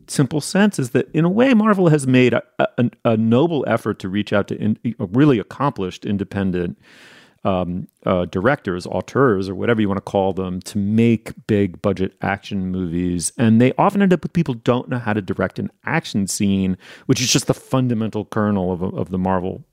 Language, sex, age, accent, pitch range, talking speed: English, male, 40-59, American, 95-125 Hz, 190 wpm